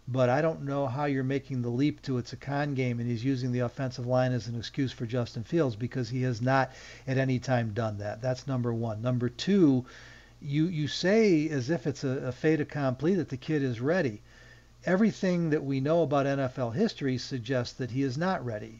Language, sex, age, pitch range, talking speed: English, male, 50-69, 125-160 Hz, 215 wpm